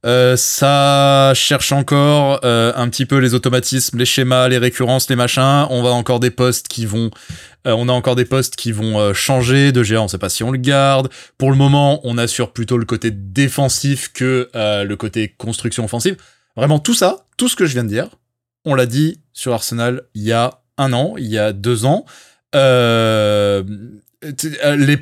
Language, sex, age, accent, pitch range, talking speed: French, male, 20-39, French, 120-150 Hz, 190 wpm